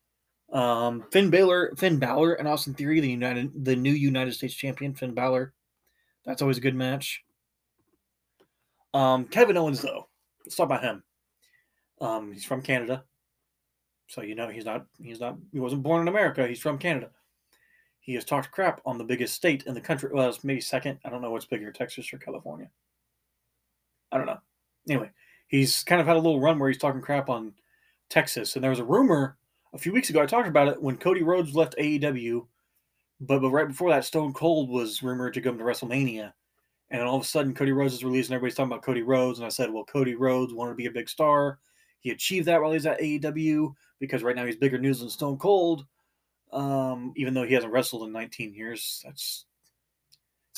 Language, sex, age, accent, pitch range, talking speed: English, male, 20-39, American, 120-145 Hz, 205 wpm